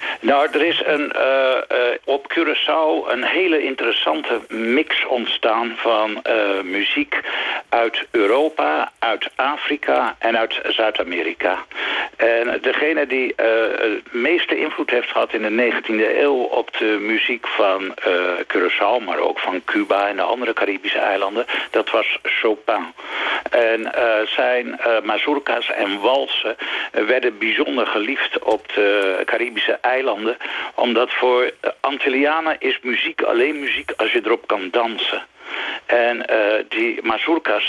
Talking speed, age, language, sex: 135 wpm, 60-79, Dutch, male